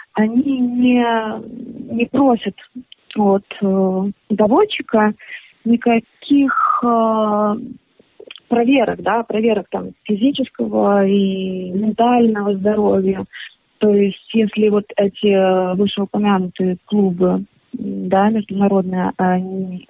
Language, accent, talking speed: Russian, native, 80 wpm